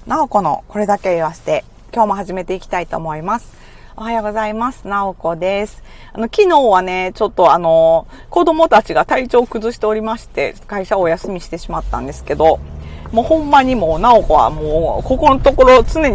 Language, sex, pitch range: Japanese, female, 165-245 Hz